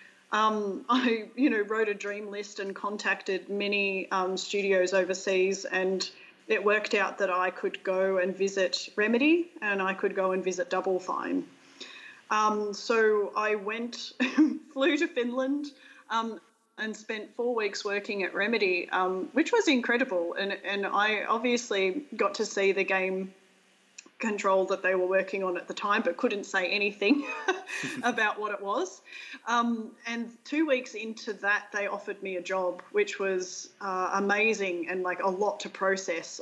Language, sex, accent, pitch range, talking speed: English, female, Australian, 190-225 Hz, 165 wpm